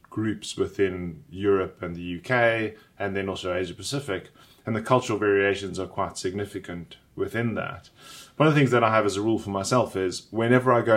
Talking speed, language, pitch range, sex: 195 wpm, English, 100-115 Hz, male